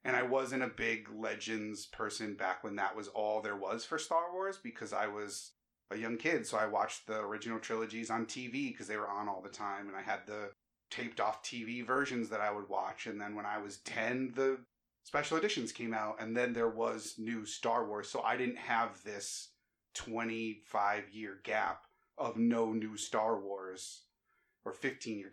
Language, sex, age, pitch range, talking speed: English, male, 30-49, 105-125 Hz, 190 wpm